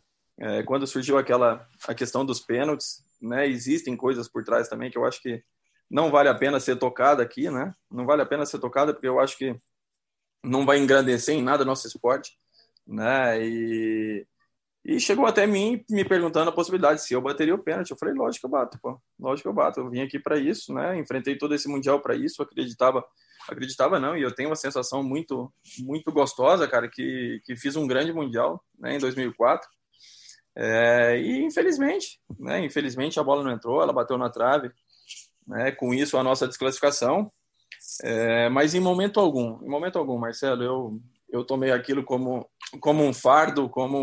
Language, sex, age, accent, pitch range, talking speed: Portuguese, male, 20-39, Brazilian, 125-145 Hz, 190 wpm